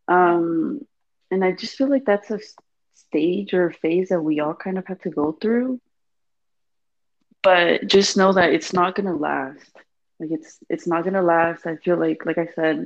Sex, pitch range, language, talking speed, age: female, 160-190 Hz, English, 205 wpm, 20-39